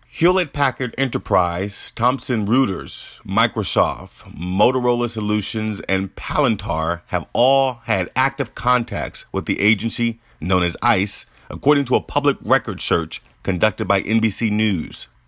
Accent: American